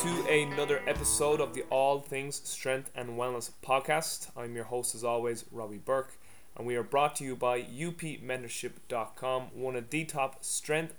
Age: 20-39